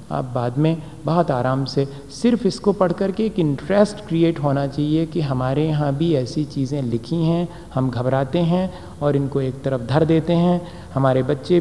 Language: Hindi